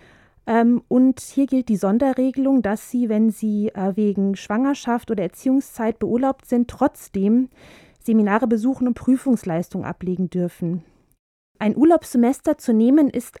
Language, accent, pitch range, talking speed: German, German, 205-250 Hz, 120 wpm